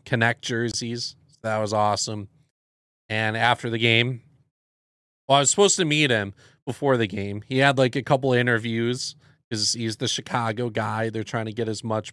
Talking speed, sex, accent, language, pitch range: 185 wpm, male, American, English, 105-135 Hz